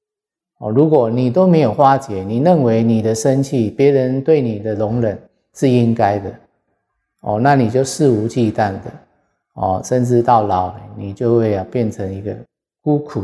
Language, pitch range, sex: Chinese, 105-130 Hz, male